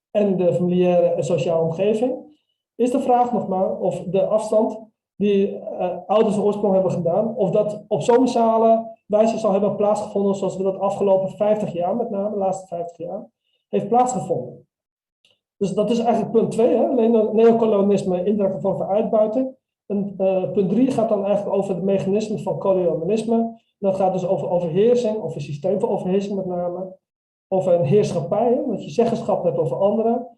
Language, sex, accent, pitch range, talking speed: English, male, Dutch, 185-220 Hz, 170 wpm